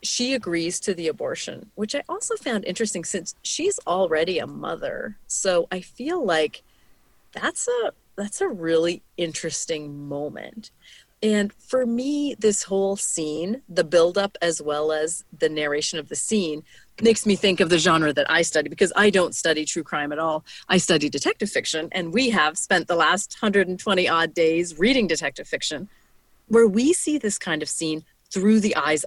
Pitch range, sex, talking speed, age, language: 155-210 Hz, female, 175 wpm, 30-49, English